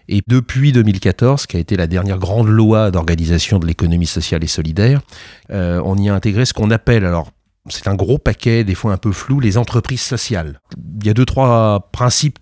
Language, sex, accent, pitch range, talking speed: French, male, French, 95-125 Hz, 210 wpm